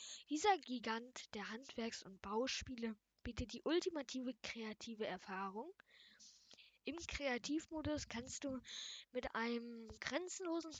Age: 10-29